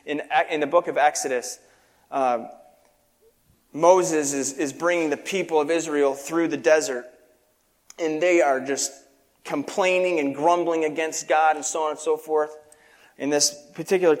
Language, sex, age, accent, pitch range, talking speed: English, male, 30-49, American, 150-215 Hz, 150 wpm